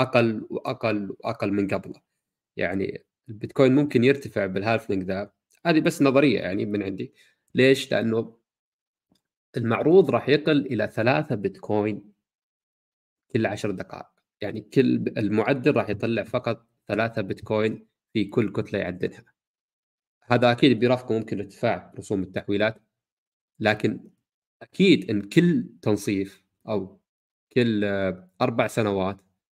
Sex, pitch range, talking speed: male, 100-130 Hz, 115 wpm